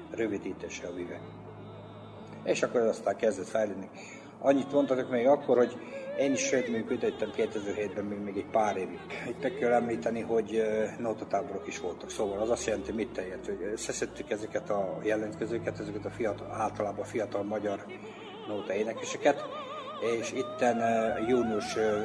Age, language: 50-69, Hungarian